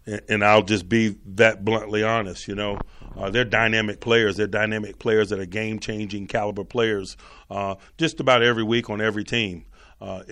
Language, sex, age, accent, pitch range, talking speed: English, male, 40-59, American, 100-115 Hz, 175 wpm